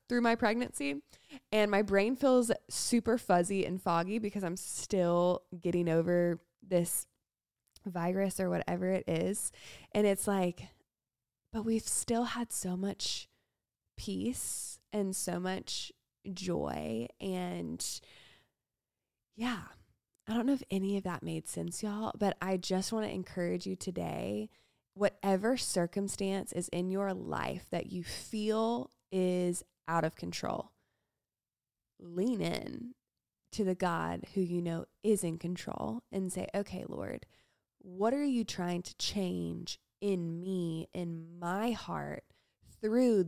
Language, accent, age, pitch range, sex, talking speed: English, American, 20-39, 170-215 Hz, female, 135 wpm